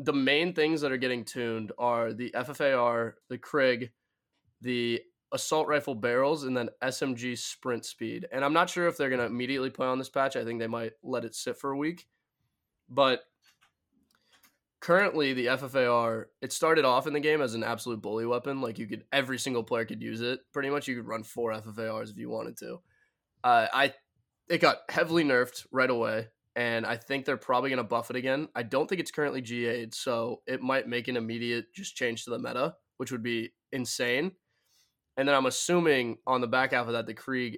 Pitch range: 115-135 Hz